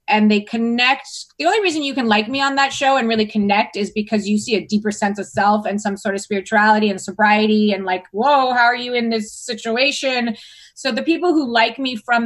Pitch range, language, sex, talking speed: 210-275 Hz, English, female, 235 wpm